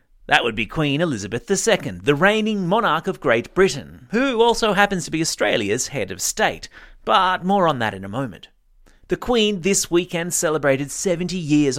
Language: English